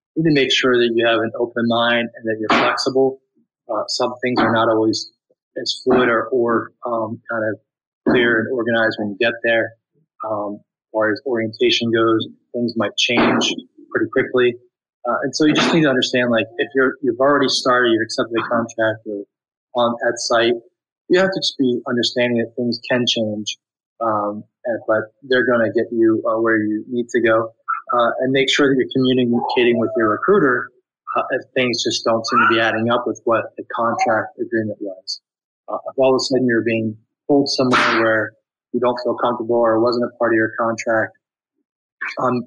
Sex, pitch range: male, 110-130 Hz